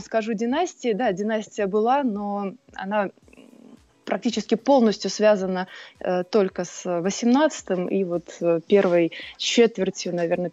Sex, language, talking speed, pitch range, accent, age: female, Russian, 105 wpm, 180-220 Hz, native, 20-39